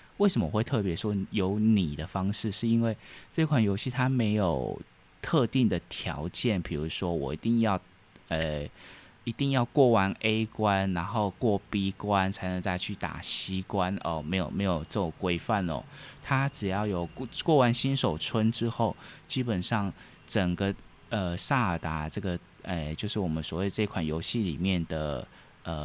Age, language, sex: 20-39, Chinese, male